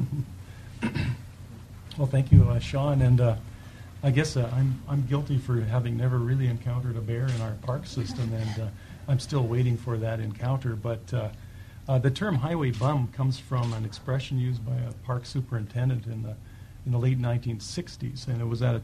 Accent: American